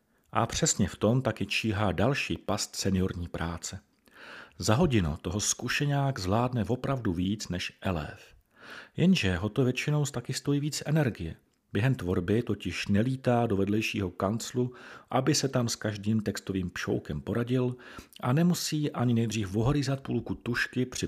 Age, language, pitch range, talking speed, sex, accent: 40-59, Czech, 95-130 Hz, 140 wpm, male, native